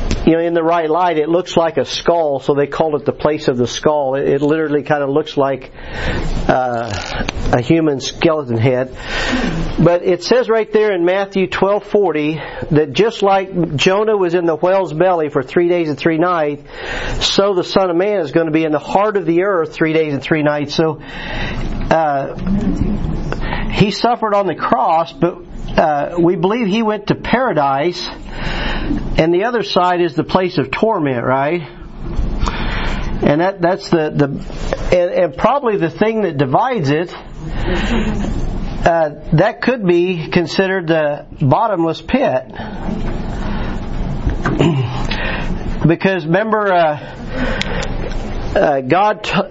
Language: English